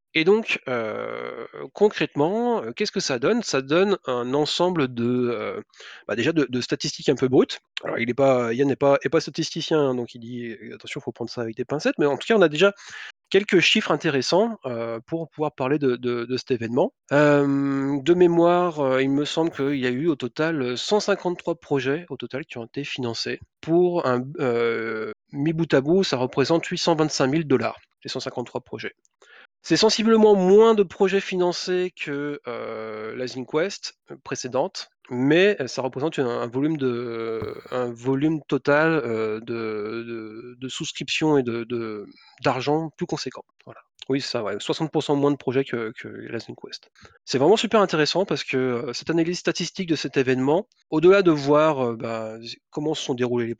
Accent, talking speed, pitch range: French, 175 wpm, 125-165 Hz